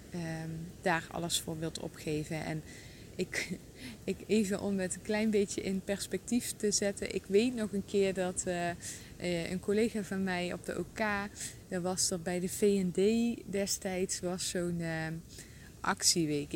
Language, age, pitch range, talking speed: English, 20-39, 165-205 Hz, 150 wpm